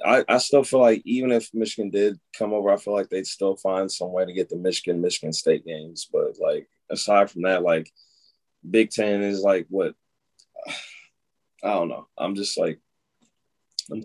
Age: 20-39